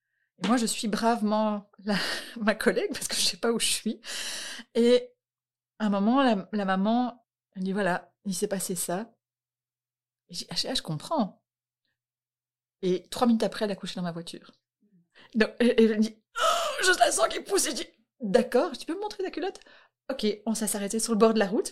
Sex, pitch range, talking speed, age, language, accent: female, 180-235 Hz, 215 wpm, 30-49, French, French